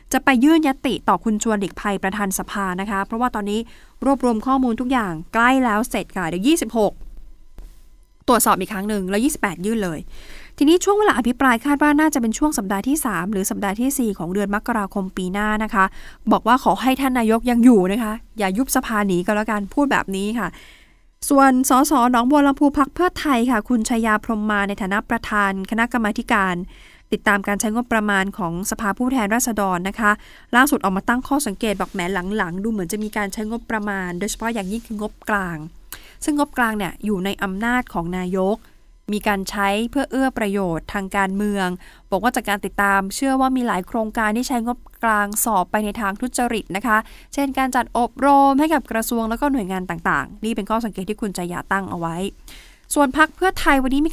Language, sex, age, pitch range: Thai, female, 20-39, 200-250 Hz